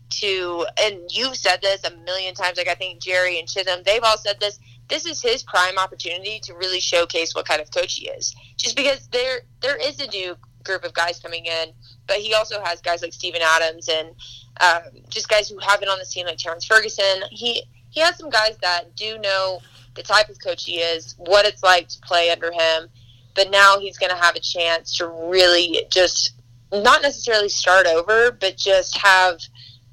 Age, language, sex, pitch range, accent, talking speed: 20-39, English, female, 160-200 Hz, American, 210 wpm